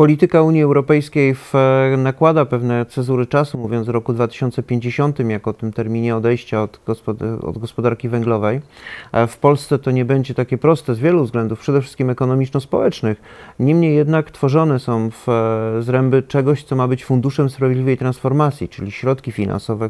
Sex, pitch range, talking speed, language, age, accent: male, 125-145 Hz, 150 wpm, Polish, 40-59, native